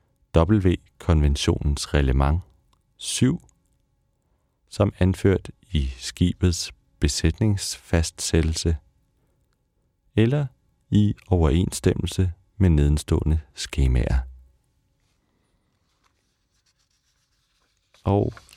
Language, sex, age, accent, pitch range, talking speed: Danish, male, 40-59, native, 75-95 Hz, 50 wpm